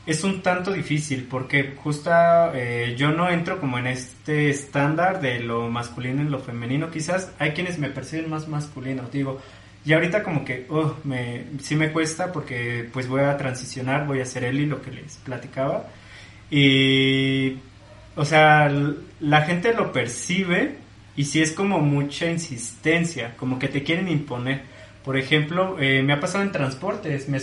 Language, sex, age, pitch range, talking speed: Spanish, male, 20-39, 130-165 Hz, 175 wpm